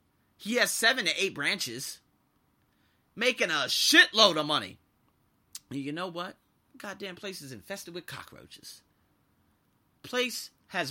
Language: English